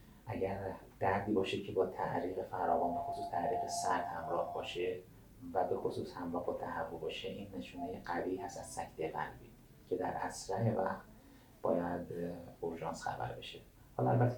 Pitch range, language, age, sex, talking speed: 90-120 Hz, Persian, 30-49, male, 140 wpm